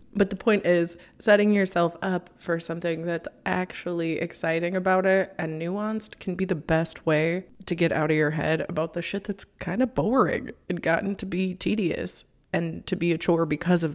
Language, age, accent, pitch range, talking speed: English, 20-39, American, 170-195 Hz, 200 wpm